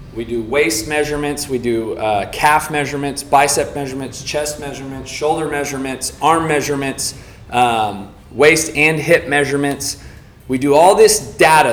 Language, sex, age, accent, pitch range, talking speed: English, male, 30-49, American, 120-150 Hz, 140 wpm